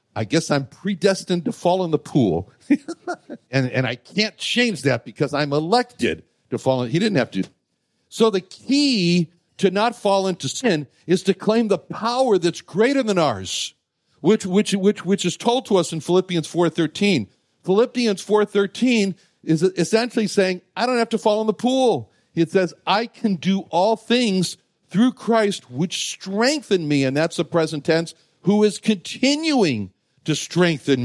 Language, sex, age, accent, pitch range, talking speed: English, male, 60-79, American, 145-215 Hz, 170 wpm